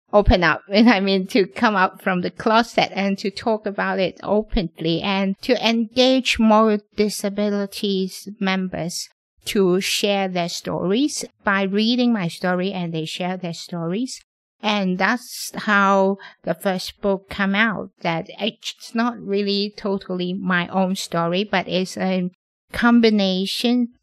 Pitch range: 180-210 Hz